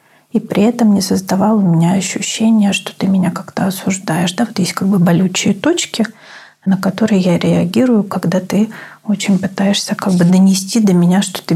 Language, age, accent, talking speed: Russian, 30-49, native, 180 wpm